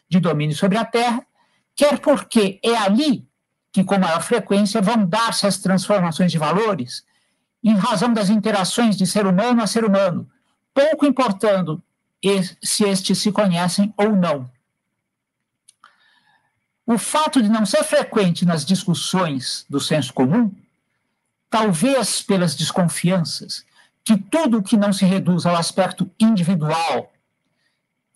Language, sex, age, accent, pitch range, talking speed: Portuguese, male, 60-79, Brazilian, 180-225 Hz, 130 wpm